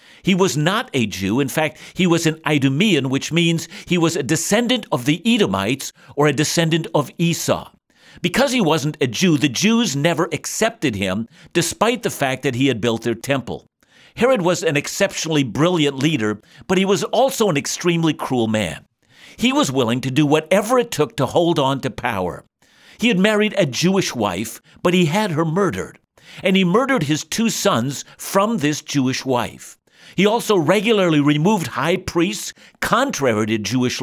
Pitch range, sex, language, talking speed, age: 135-190 Hz, male, English, 180 wpm, 60-79